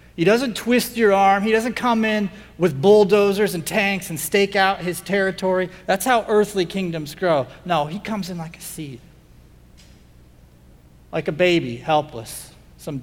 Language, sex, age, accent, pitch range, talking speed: English, male, 40-59, American, 120-170 Hz, 160 wpm